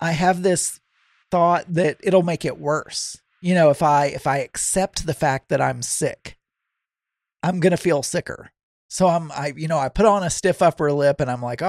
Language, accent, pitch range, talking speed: English, American, 140-190 Hz, 205 wpm